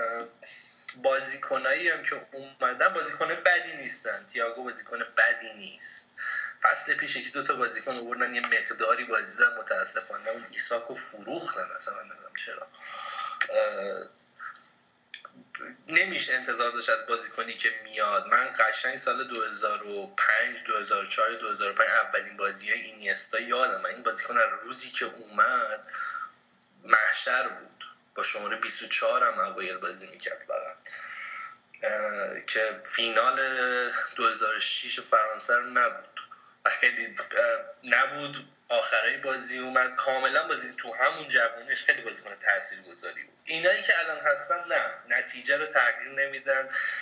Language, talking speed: Persian, 115 wpm